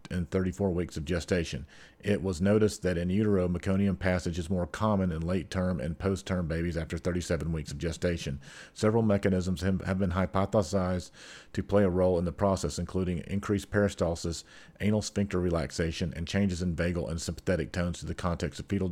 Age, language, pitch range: 40-59, English, 85-100 Hz